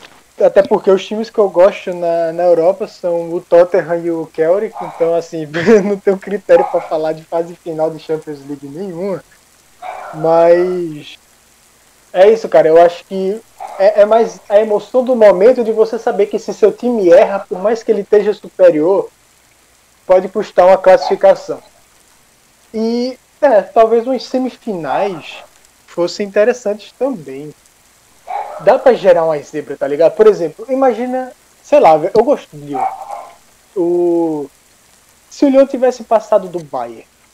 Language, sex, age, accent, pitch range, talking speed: Portuguese, male, 20-39, Brazilian, 170-235 Hz, 150 wpm